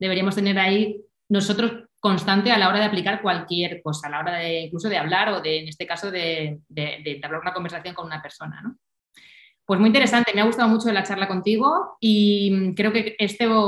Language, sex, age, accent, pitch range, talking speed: Spanish, female, 20-39, Spanish, 175-215 Hz, 215 wpm